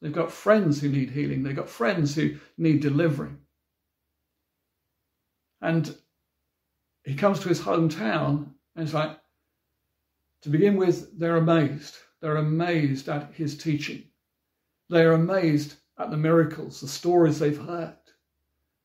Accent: British